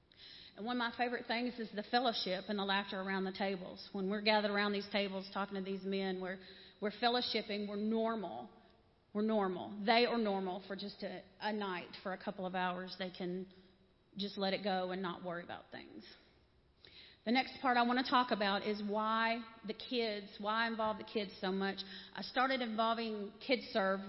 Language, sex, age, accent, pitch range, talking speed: English, female, 40-59, American, 195-225 Hz, 200 wpm